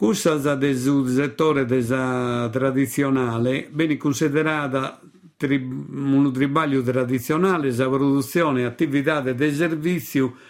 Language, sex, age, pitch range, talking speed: Italian, male, 50-69, 130-155 Hz, 90 wpm